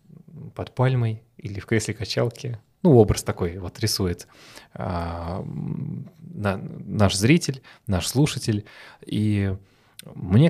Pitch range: 100-130 Hz